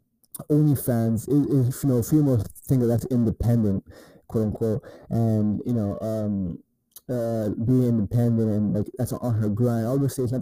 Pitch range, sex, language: 110-135 Hz, male, English